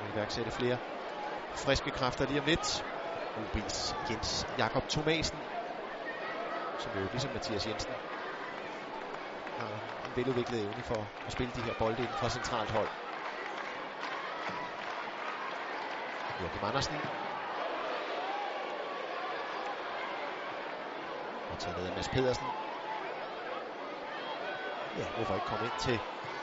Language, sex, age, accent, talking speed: Danish, male, 30-49, native, 100 wpm